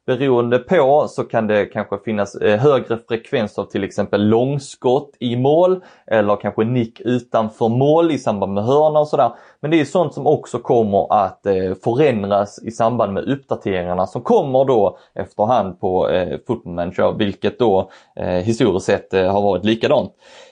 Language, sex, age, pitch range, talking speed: Swedish, male, 20-39, 105-135 Hz, 150 wpm